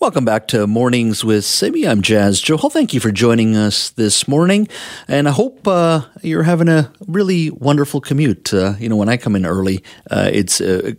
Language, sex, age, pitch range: English, male, 50-69, 95-120 Hz